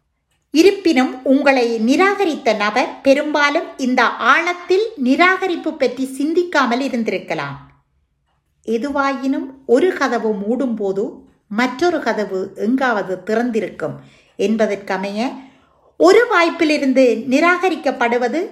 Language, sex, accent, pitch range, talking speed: Tamil, female, native, 220-320 Hz, 75 wpm